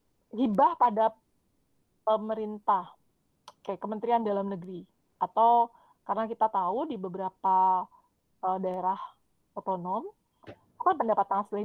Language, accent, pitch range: Indonesian, native, 195-240 Hz